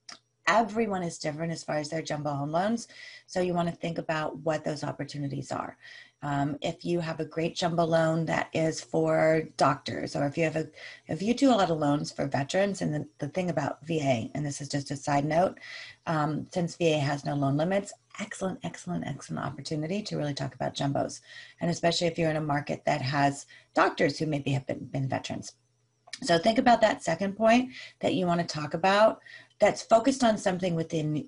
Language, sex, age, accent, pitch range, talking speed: English, female, 30-49, American, 145-185 Hz, 200 wpm